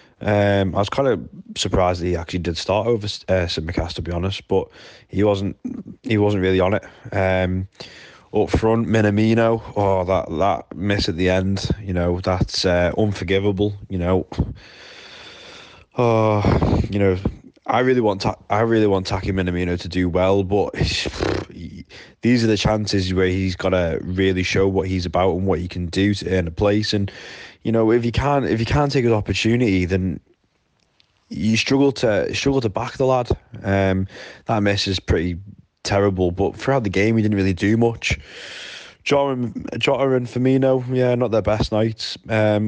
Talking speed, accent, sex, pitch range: 175 wpm, British, male, 95-110 Hz